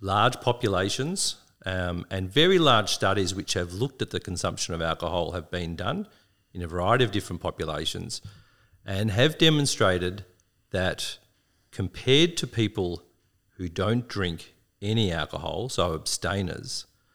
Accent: Australian